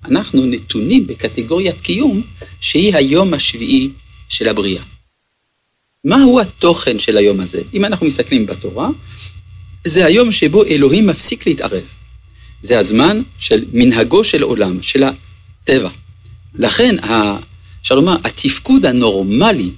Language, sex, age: Hebrew, male, 50-69